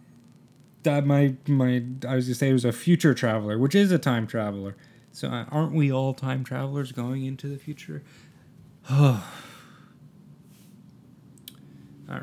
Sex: male